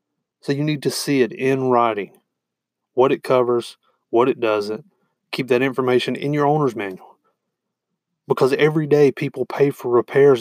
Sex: male